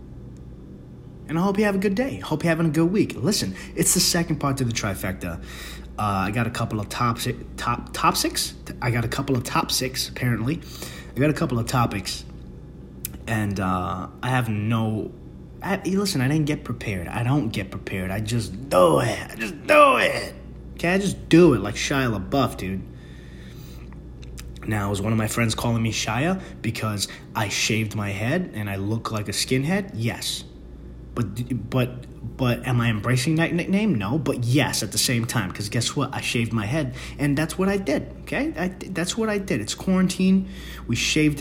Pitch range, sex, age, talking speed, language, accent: 95-135 Hz, male, 30-49, 200 wpm, English, American